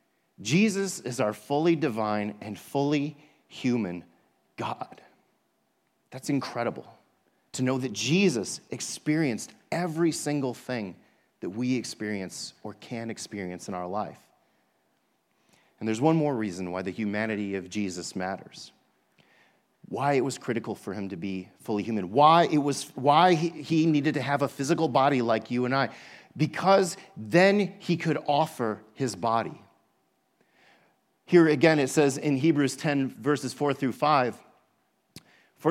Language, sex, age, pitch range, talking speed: English, male, 40-59, 115-170 Hz, 140 wpm